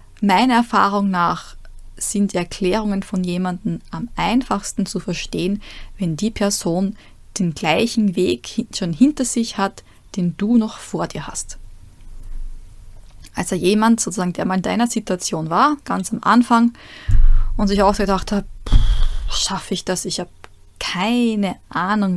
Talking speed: 145 wpm